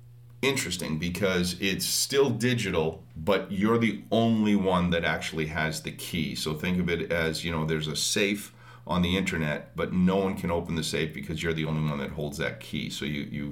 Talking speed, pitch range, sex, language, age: 210 wpm, 80-100 Hz, male, English, 40-59